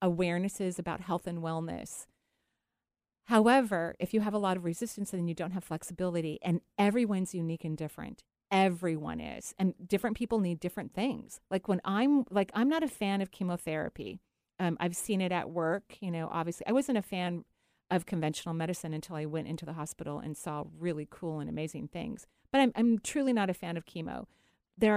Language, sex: English, female